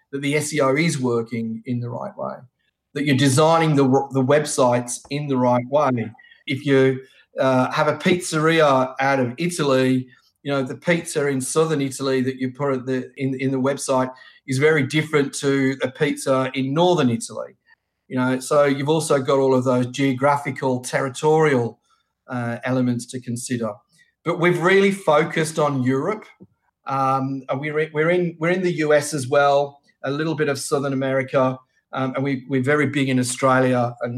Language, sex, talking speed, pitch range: English, male, 175 wpm, 130-150 Hz